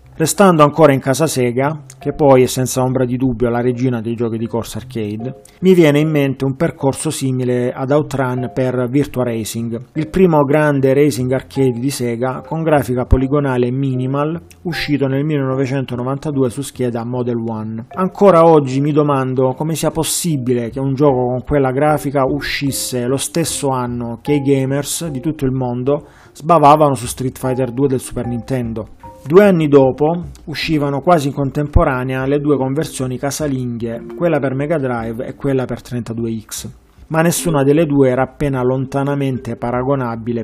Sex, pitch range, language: male, 125-145 Hz, Italian